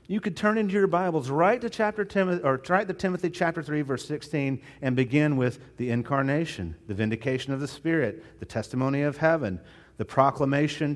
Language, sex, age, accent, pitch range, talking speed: English, male, 40-59, American, 115-150 Hz, 185 wpm